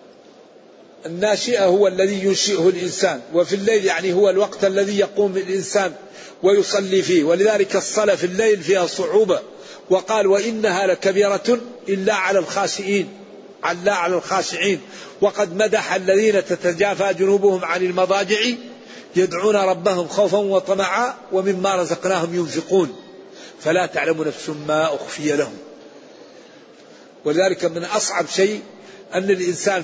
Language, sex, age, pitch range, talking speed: Arabic, male, 50-69, 180-205 Hz, 115 wpm